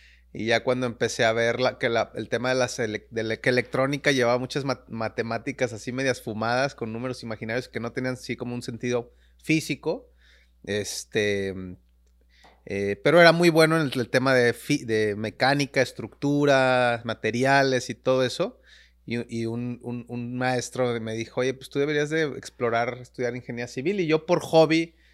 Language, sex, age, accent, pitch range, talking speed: Spanish, male, 30-49, Mexican, 110-135 Hz, 180 wpm